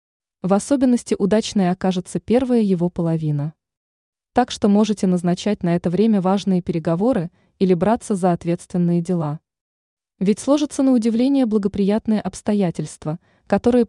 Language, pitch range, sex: Russian, 175-220 Hz, female